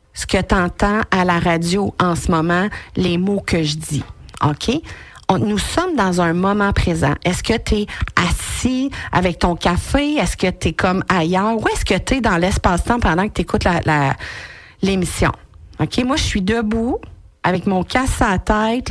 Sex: female